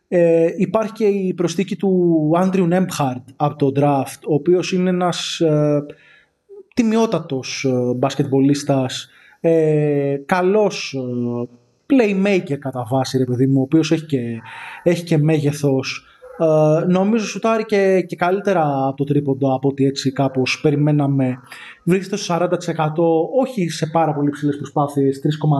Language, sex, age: Greek, male, 20-39